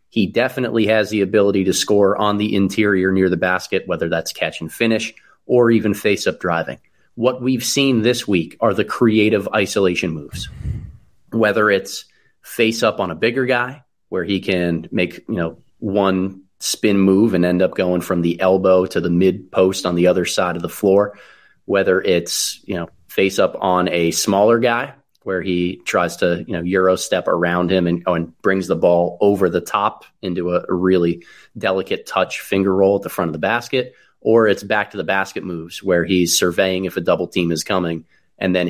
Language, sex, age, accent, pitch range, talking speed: English, male, 30-49, American, 90-105 Hz, 200 wpm